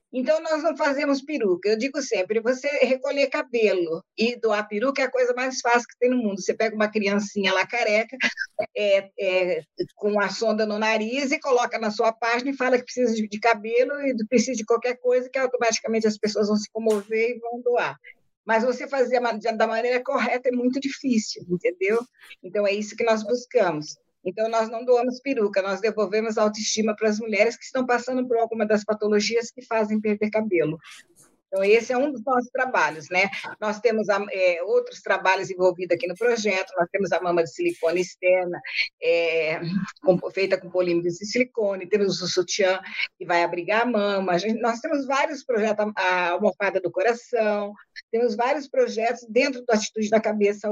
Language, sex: Portuguese, female